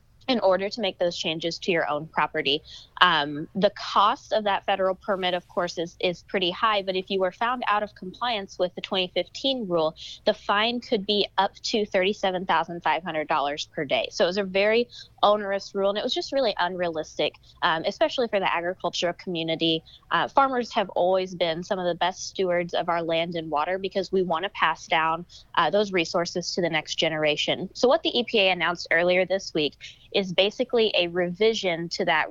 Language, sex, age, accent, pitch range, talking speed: English, female, 20-39, American, 170-205 Hz, 195 wpm